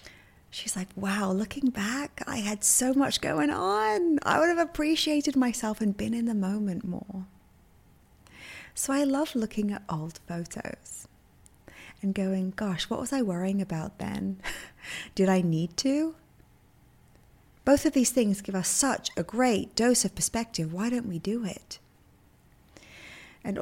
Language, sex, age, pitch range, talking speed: English, female, 30-49, 185-245 Hz, 150 wpm